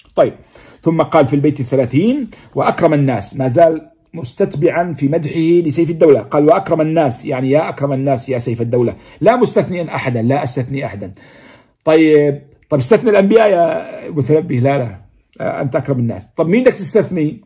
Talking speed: 155 wpm